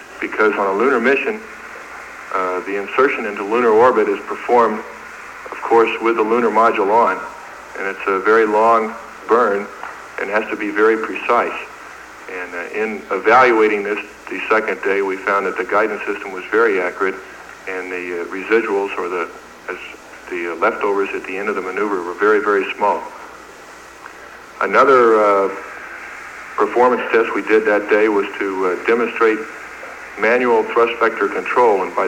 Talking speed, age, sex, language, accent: 165 wpm, 50-69, male, Italian, American